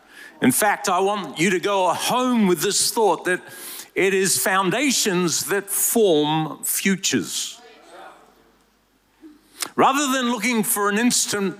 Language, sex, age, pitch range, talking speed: English, male, 50-69, 180-225 Hz, 125 wpm